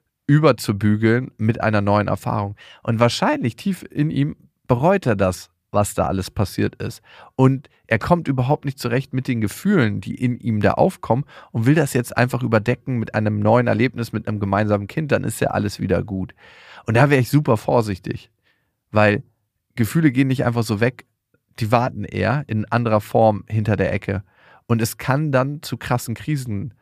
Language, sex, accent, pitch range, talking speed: German, male, German, 105-130 Hz, 180 wpm